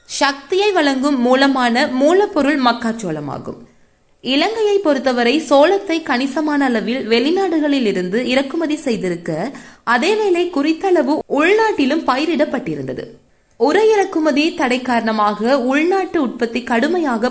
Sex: female